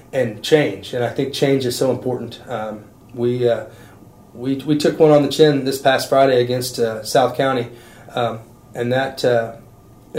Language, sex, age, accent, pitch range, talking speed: English, male, 30-49, American, 120-135 Hz, 175 wpm